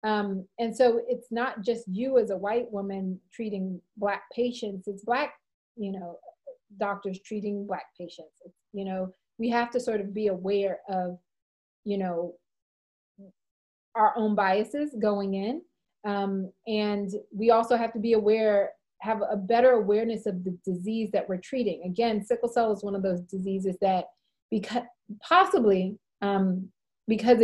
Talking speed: 155 wpm